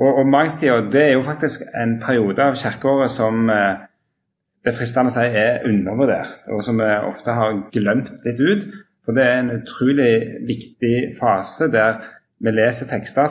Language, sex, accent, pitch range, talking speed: English, male, Norwegian, 110-130 Hz, 160 wpm